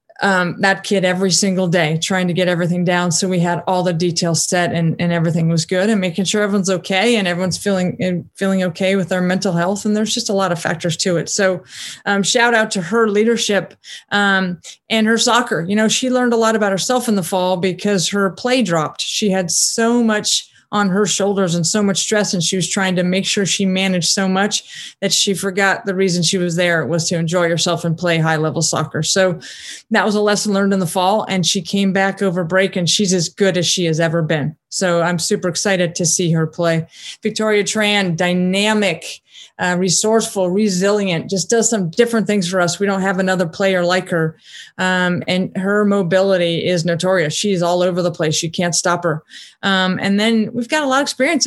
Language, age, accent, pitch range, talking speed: English, 30-49, American, 175-205 Hz, 215 wpm